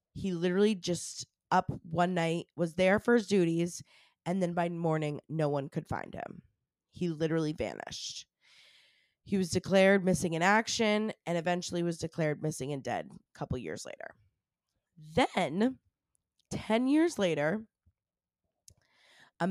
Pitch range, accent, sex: 160-195 Hz, American, female